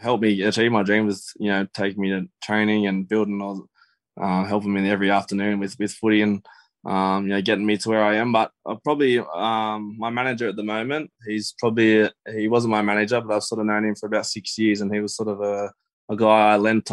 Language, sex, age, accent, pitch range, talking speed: English, male, 20-39, Australian, 100-110 Hz, 245 wpm